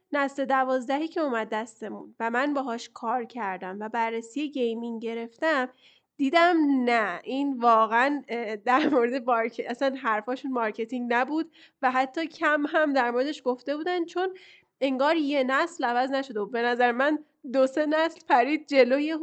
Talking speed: 150 wpm